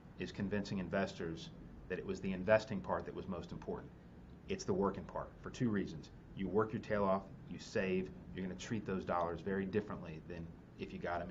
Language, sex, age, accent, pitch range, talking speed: English, male, 30-49, American, 95-135 Hz, 210 wpm